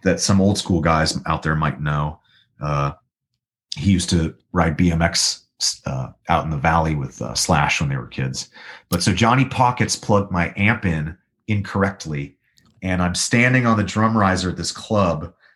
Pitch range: 85-110 Hz